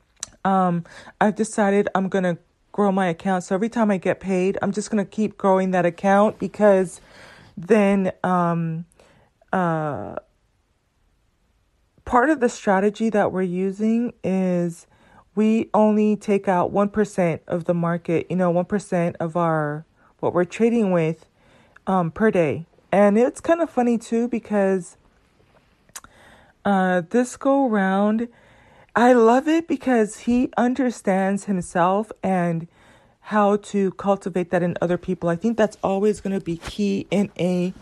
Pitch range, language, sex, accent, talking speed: 180-220 Hz, English, female, American, 145 wpm